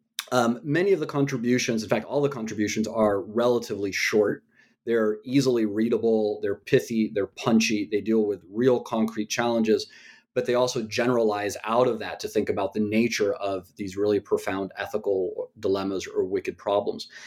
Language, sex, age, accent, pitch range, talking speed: English, male, 30-49, American, 105-140 Hz, 165 wpm